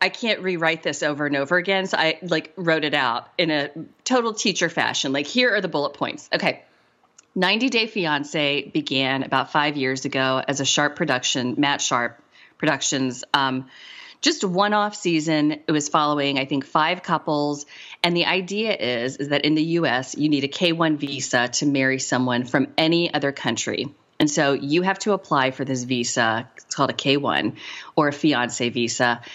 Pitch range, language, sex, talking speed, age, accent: 135-170 Hz, English, female, 190 wpm, 30-49, American